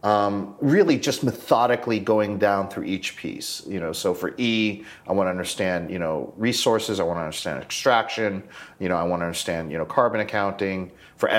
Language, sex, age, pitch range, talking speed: English, male, 30-49, 85-105 Hz, 195 wpm